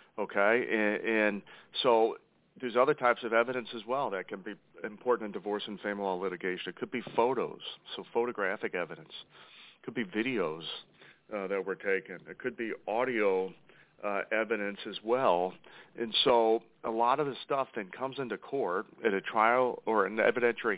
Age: 40-59